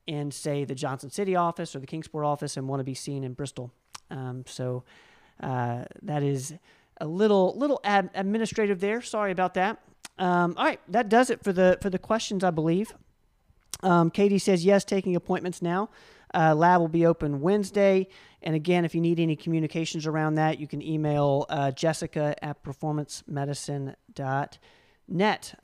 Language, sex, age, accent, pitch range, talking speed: English, male, 40-59, American, 150-190 Hz, 170 wpm